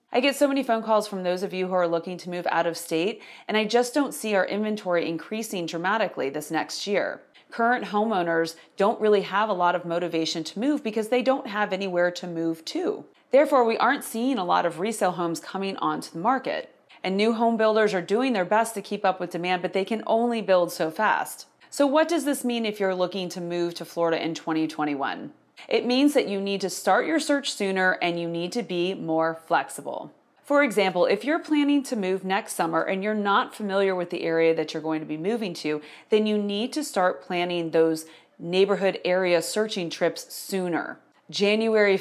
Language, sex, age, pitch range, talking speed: English, female, 30-49, 170-225 Hz, 215 wpm